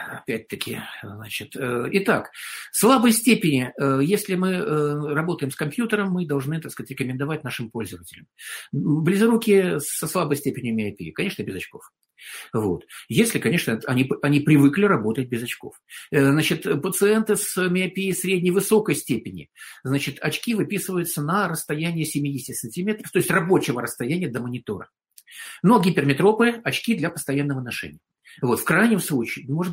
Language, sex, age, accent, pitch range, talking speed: Russian, male, 50-69, native, 125-185 Hz, 145 wpm